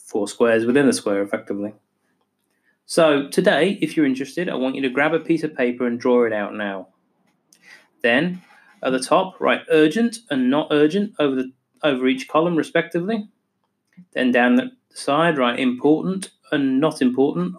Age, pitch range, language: 30-49, 125-185 Hz, English